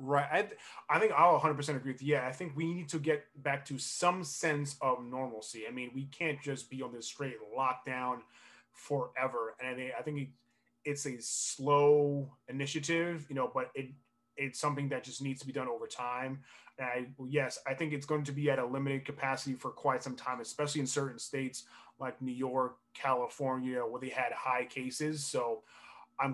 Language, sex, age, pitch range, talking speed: English, male, 20-39, 130-150 Hz, 205 wpm